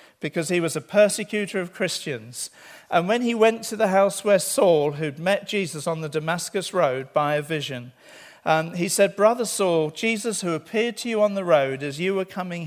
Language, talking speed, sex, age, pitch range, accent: English, 205 wpm, male, 50-69, 140-210 Hz, British